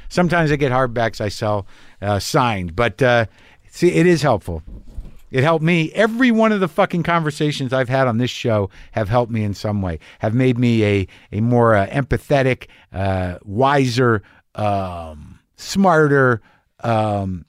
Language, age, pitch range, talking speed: English, 50-69, 110-155 Hz, 160 wpm